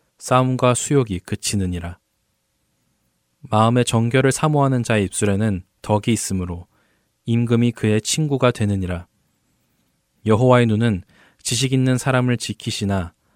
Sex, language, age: male, Korean, 20-39